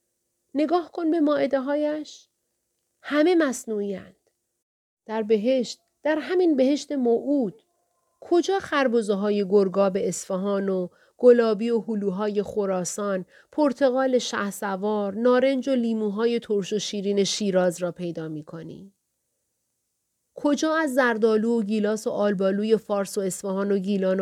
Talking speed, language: 115 wpm, Persian